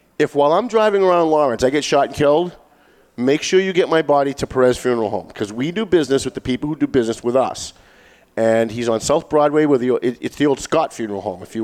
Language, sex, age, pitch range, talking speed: English, male, 40-59, 115-145 Hz, 245 wpm